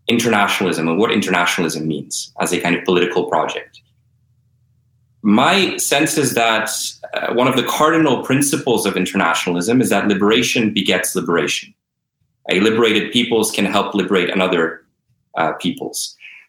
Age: 30-49